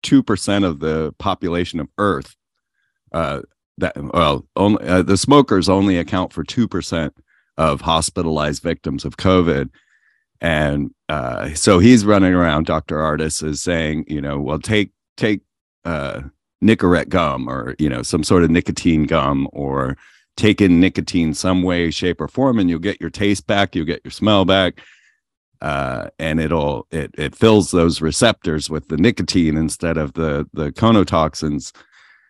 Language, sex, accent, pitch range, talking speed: English, male, American, 75-95 Hz, 160 wpm